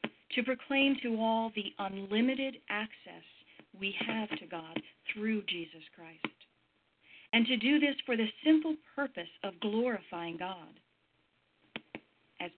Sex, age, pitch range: female, 40-59, 180-235 Hz